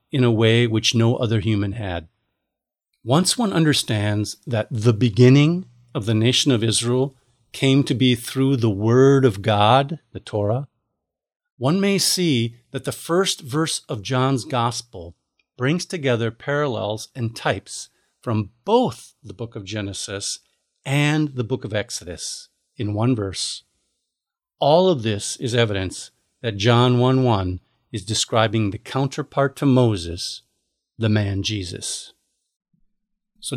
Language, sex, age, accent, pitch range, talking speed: English, male, 50-69, American, 110-140 Hz, 135 wpm